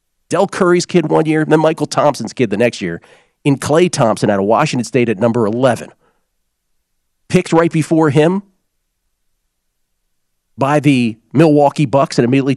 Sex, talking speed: male, 160 wpm